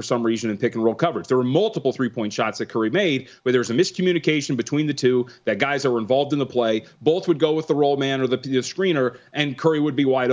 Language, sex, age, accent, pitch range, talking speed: English, male, 30-49, American, 125-160 Hz, 255 wpm